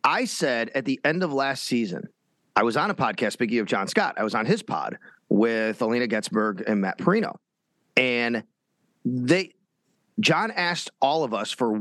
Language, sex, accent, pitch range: English, male, American, 115-175 Hz